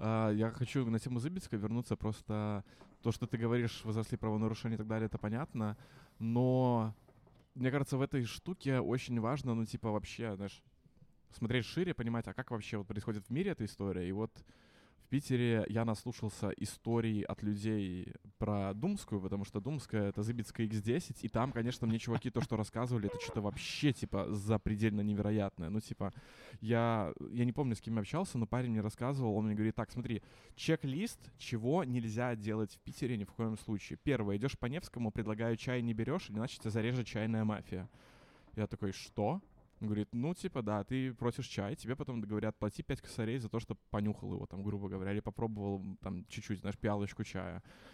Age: 20-39